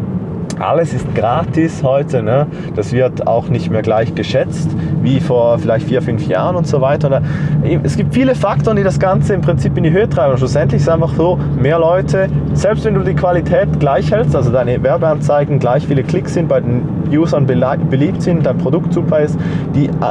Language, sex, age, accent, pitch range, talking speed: German, male, 20-39, German, 130-160 Hz, 190 wpm